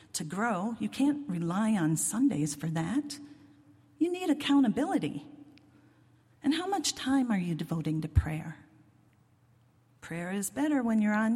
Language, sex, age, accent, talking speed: English, female, 40-59, American, 145 wpm